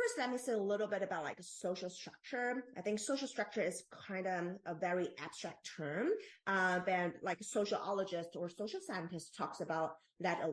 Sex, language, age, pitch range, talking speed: female, English, 30-49, 165-205 Hz, 190 wpm